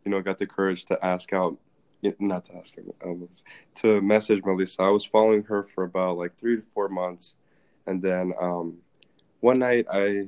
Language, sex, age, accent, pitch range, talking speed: English, male, 20-39, American, 90-100 Hz, 195 wpm